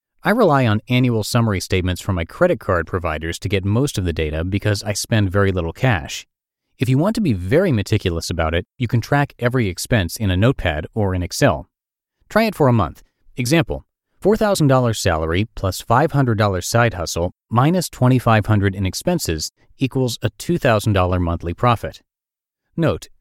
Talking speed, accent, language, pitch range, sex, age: 170 wpm, American, English, 95-130 Hz, male, 30-49